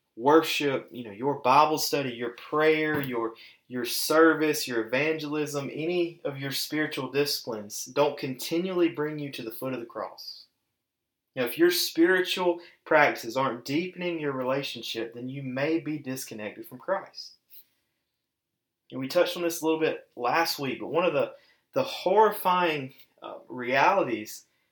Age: 20-39